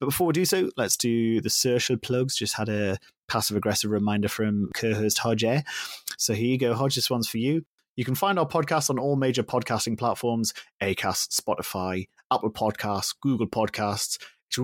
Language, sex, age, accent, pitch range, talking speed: English, male, 30-49, British, 105-135 Hz, 180 wpm